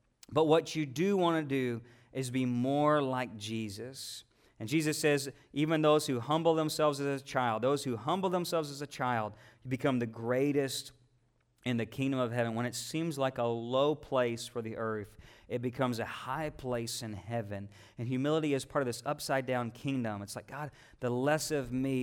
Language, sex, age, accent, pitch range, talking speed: English, male, 40-59, American, 120-150 Hz, 190 wpm